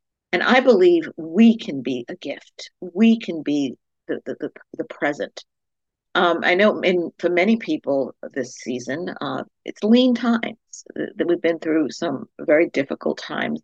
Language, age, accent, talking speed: English, 50-69, American, 165 wpm